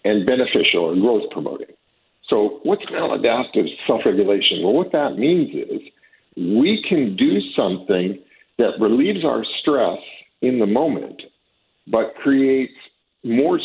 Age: 50-69